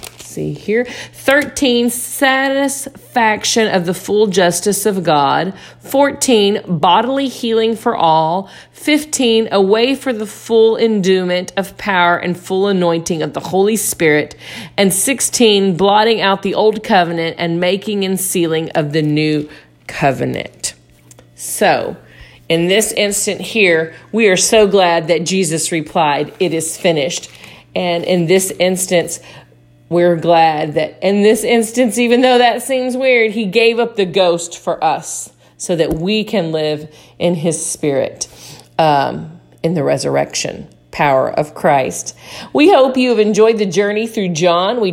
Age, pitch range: 50-69, 170-230 Hz